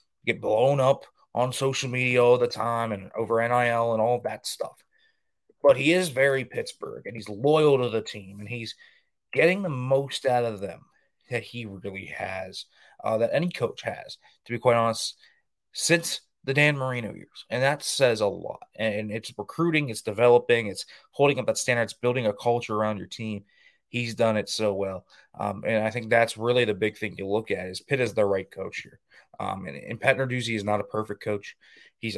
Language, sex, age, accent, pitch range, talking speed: English, male, 20-39, American, 105-130 Hz, 205 wpm